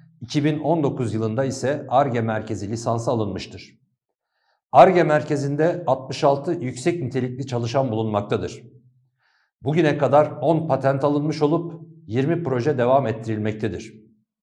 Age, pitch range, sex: 50-69, 120-145 Hz, male